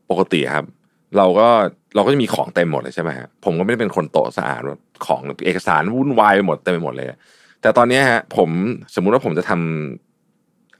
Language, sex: Thai, male